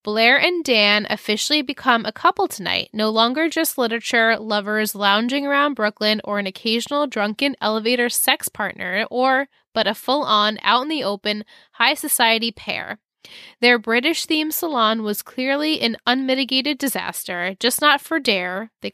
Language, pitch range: English, 210-265 Hz